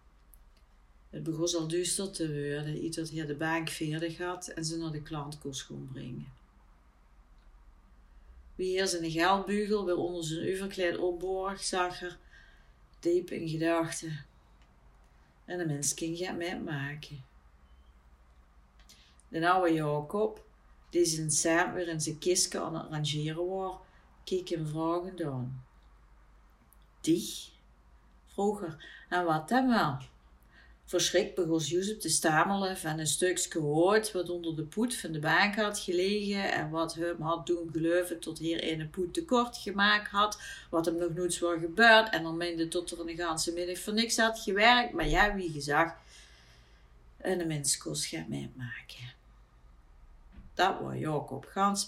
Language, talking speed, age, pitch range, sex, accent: Dutch, 145 wpm, 40-59, 130-185 Hz, female, Dutch